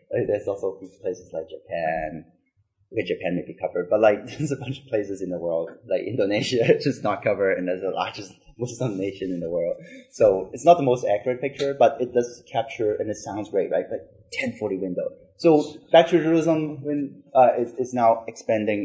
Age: 20-39